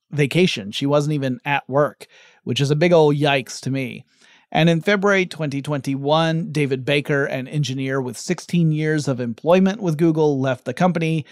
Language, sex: English, male